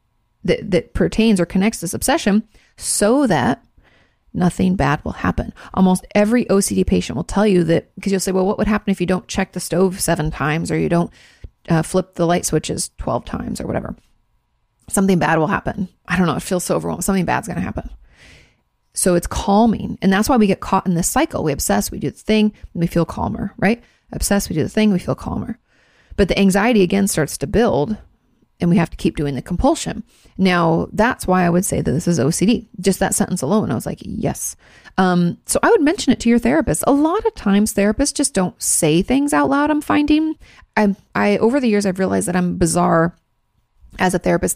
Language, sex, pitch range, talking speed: English, female, 175-225 Hz, 220 wpm